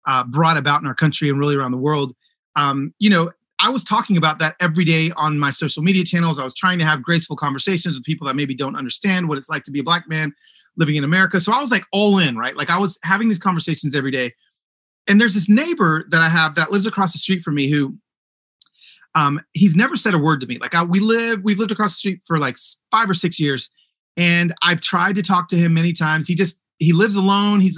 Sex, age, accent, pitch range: male, 30-49, American, 155-195 Hz